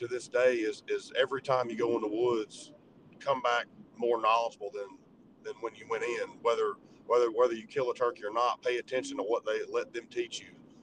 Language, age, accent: English, 40-59, American